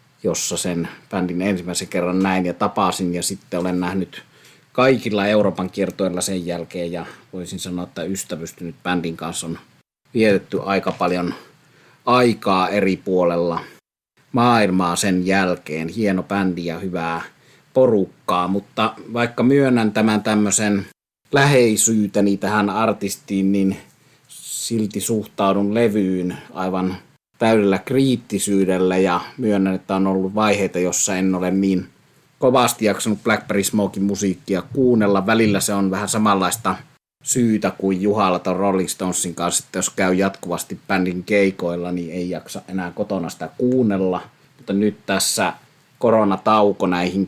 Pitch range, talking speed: 90-105 Hz, 125 wpm